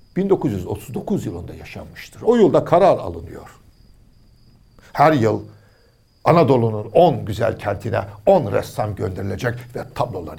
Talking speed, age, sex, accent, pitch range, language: 105 wpm, 60-79, male, native, 115-165 Hz, Turkish